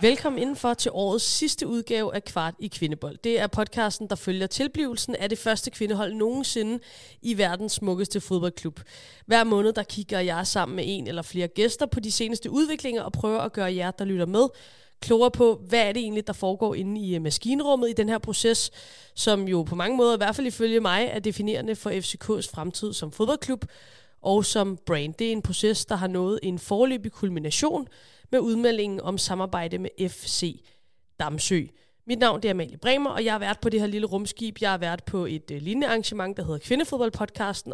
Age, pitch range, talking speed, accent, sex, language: 30-49, 185-230 Hz, 200 wpm, native, female, Danish